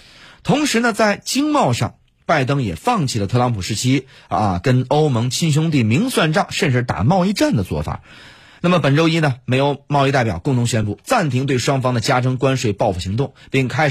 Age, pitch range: 30-49, 110-155 Hz